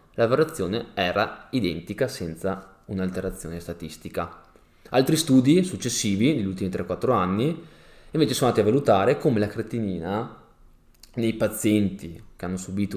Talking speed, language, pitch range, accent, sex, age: 125 wpm, Italian, 90-110 Hz, native, male, 20-39